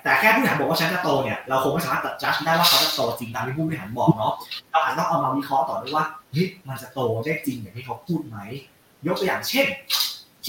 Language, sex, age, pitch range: Thai, male, 20-39, 130-165 Hz